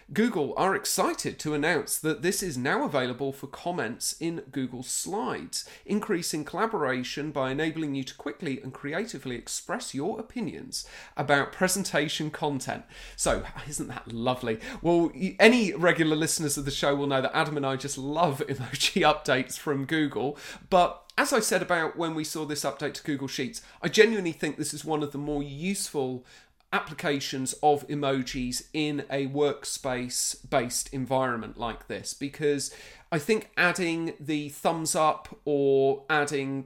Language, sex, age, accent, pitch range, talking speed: English, male, 30-49, British, 135-165 Hz, 155 wpm